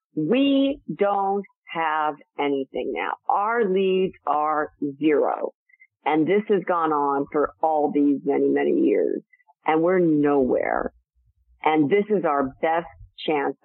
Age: 50-69